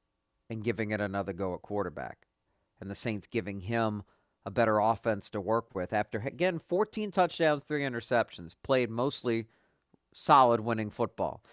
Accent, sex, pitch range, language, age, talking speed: American, male, 90-125 Hz, English, 50-69, 150 wpm